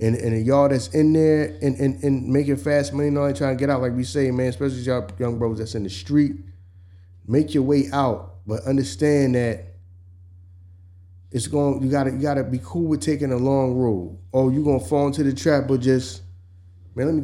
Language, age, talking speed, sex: English, 30-49, 230 wpm, male